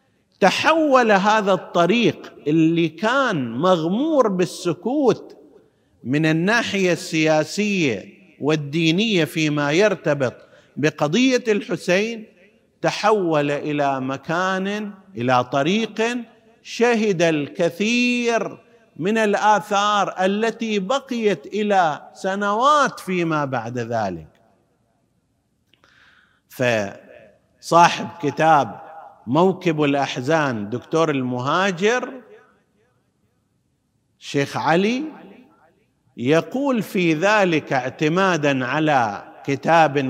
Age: 50-69